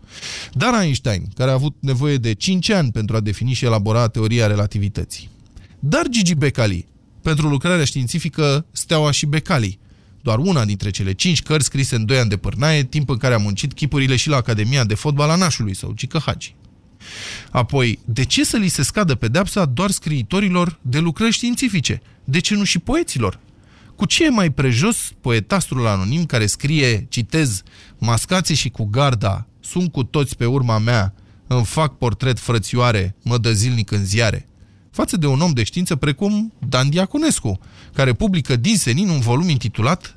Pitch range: 110-170 Hz